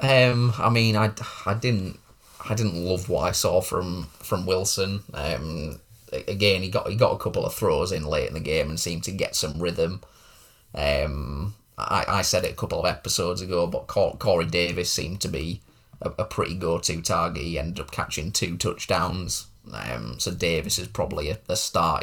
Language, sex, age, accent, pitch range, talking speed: English, male, 20-39, British, 85-110 Hz, 195 wpm